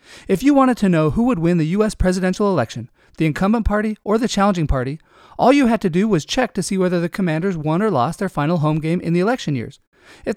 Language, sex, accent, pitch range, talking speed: English, male, American, 150-215 Hz, 250 wpm